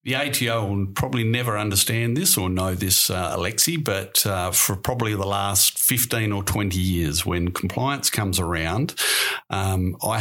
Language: English